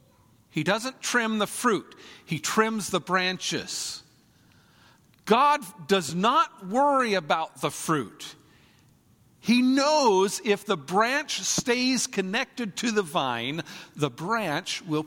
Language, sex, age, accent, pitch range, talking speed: English, male, 50-69, American, 155-210 Hz, 115 wpm